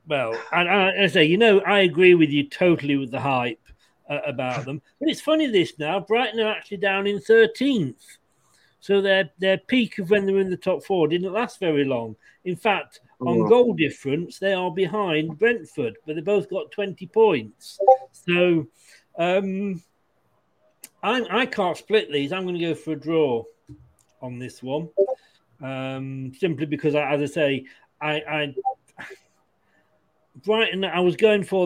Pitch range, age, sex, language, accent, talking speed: 145-195 Hz, 40-59, male, English, British, 175 wpm